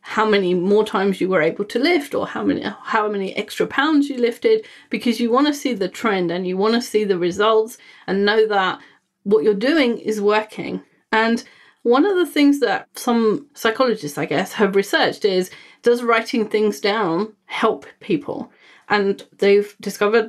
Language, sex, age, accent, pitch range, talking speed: English, female, 30-49, British, 205-265 Hz, 185 wpm